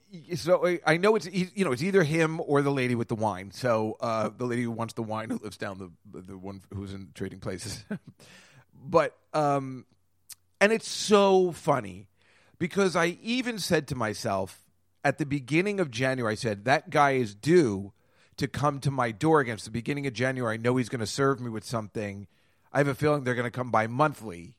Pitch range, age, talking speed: 110-160 Hz, 30-49, 205 wpm